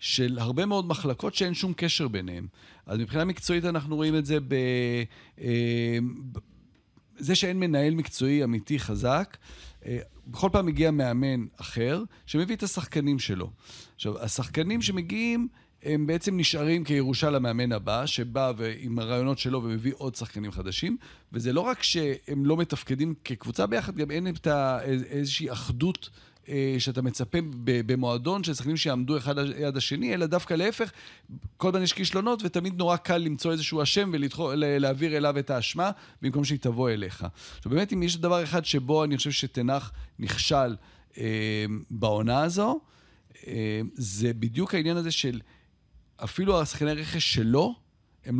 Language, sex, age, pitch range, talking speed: Hebrew, male, 40-59, 120-160 Hz, 145 wpm